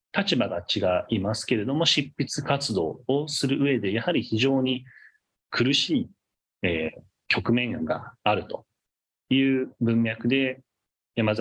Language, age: Japanese, 30-49